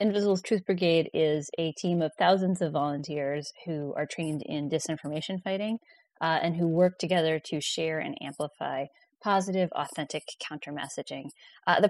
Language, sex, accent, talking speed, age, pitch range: English, female, American, 145 wpm, 20-39, 150-180 Hz